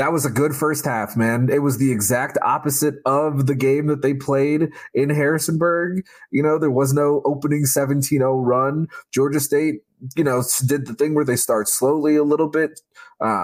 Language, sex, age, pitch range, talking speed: English, male, 20-39, 115-145 Hz, 190 wpm